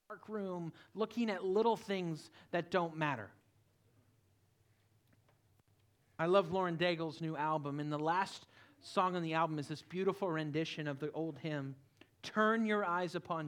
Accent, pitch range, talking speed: American, 115-170 Hz, 150 wpm